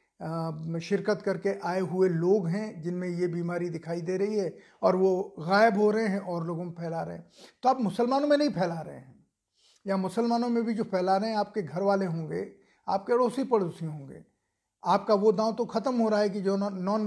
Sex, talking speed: male, 210 wpm